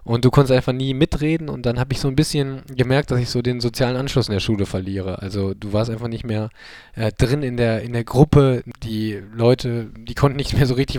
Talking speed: 245 wpm